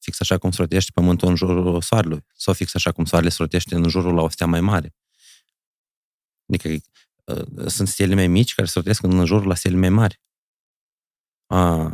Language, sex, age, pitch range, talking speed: Romanian, male, 30-49, 85-100 Hz, 180 wpm